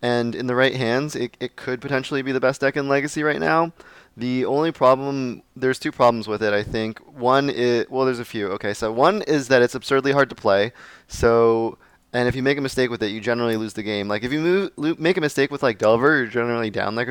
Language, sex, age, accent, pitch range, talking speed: English, male, 20-39, American, 110-135 Hz, 255 wpm